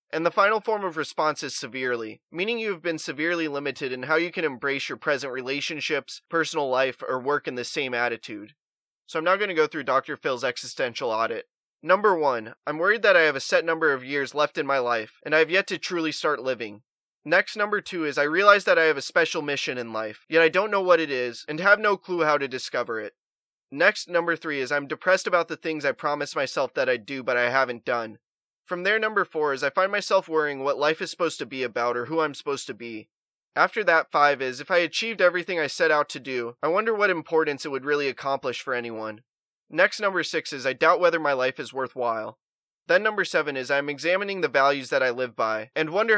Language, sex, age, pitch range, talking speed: English, male, 20-39, 130-175 Hz, 240 wpm